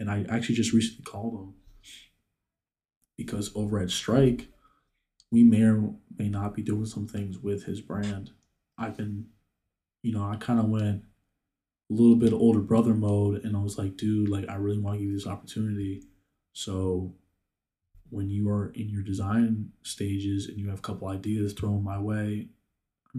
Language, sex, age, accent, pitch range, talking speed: English, male, 20-39, American, 100-110 Hz, 180 wpm